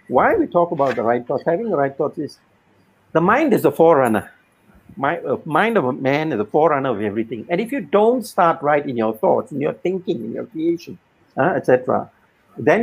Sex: male